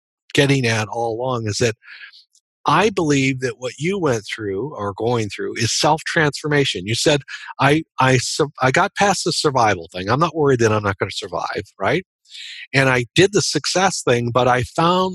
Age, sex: 50-69, male